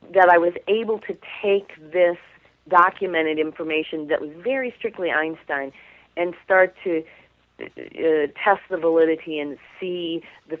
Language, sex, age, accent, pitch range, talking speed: English, female, 40-59, American, 145-170 Hz, 135 wpm